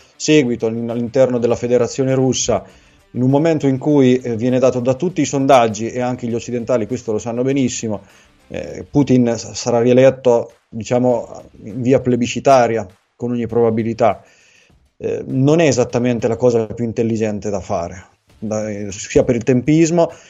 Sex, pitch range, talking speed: male, 115-130 Hz, 140 wpm